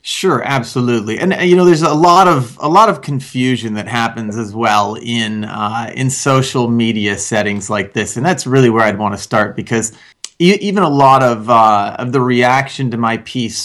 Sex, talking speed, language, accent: male, 200 wpm, English, American